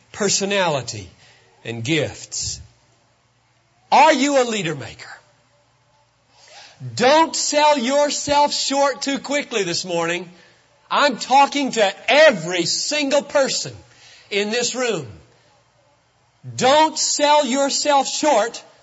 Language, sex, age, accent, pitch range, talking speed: English, male, 40-59, American, 170-260 Hz, 90 wpm